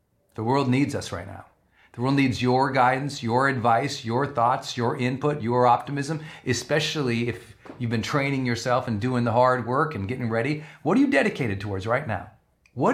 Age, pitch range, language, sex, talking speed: 40-59, 115-155 Hz, English, male, 190 wpm